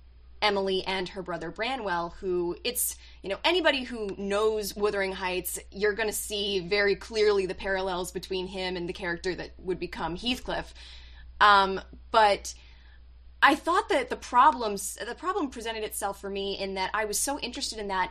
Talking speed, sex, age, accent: 170 wpm, female, 20-39, American